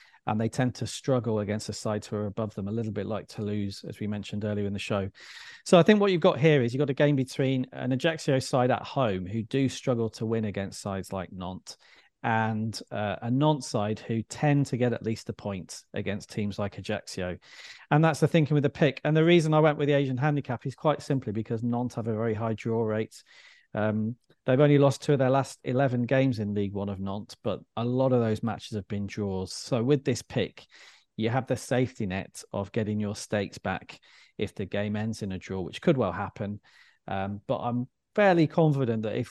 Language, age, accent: English, 40-59, British